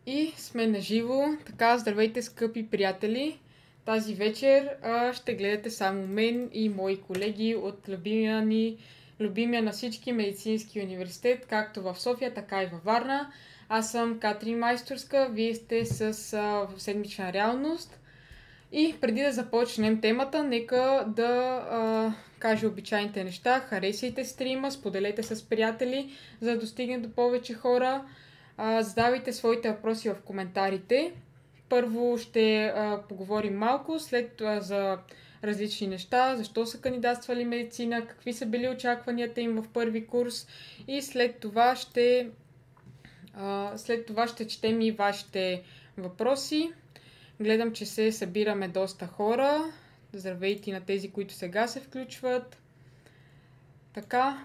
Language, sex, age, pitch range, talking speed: Bulgarian, female, 20-39, 205-245 Hz, 130 wpm